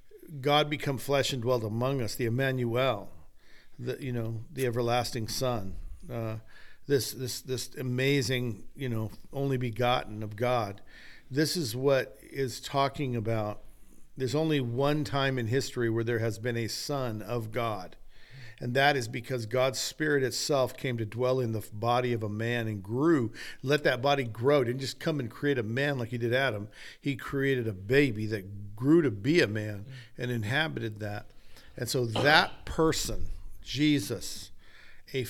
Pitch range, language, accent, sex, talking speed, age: 110-140 Hz, English, American, male, 165 wpm, 50-69